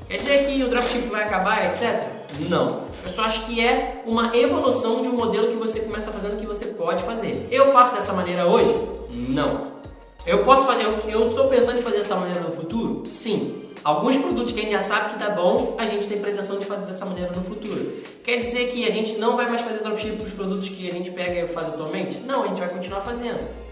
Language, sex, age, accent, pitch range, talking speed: Portuguese, male, 20-39, Brazilian, 175-230 Hz, 240 wpm